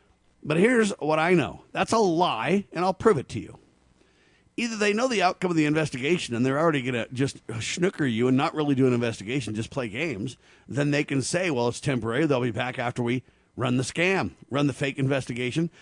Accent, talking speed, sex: American, 220 wpm, male